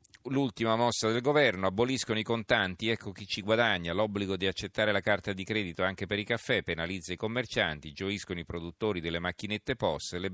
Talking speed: 185 wpm